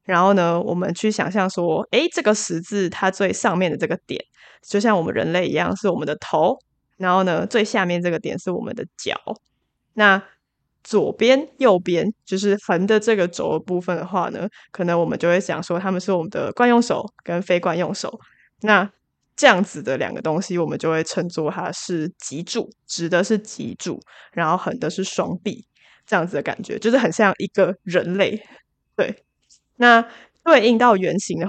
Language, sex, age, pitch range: Chinese, female, 20-39, 175-215 Hz